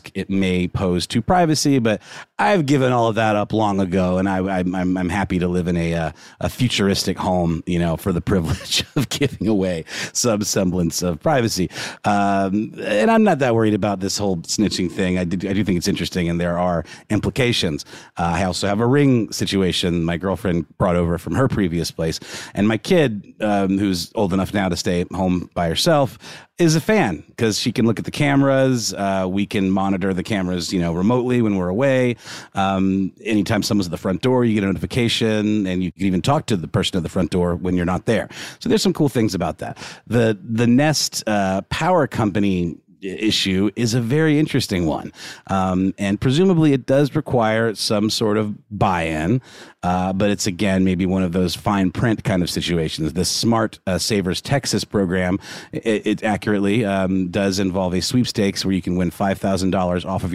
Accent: American